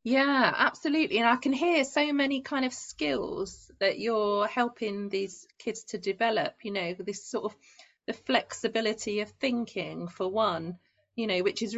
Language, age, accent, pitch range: English, 30-49, British, 190-230 Hz